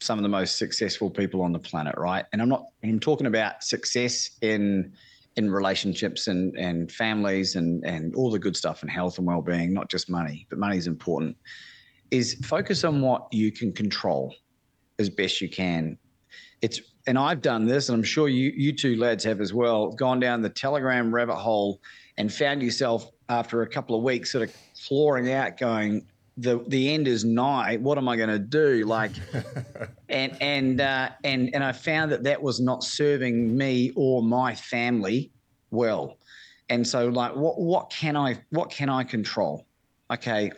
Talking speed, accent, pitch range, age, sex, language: 185 wpm, Australian, 110-140 Hz, 30-49, male, English